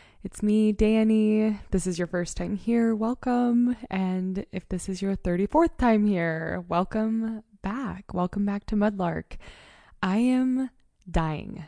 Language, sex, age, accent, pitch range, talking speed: English, female, 20-39, American, 170-200 Hz, 140 wpm